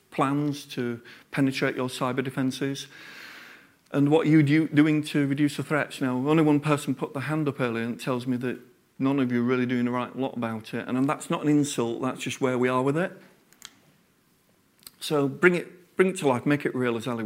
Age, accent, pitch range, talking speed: 40-59, British, 120-145 Hz, 220 wpm